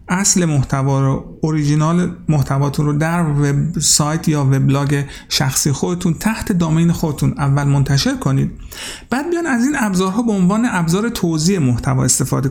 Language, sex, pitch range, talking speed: Persian, male, 150-200 Hz, 135 wpm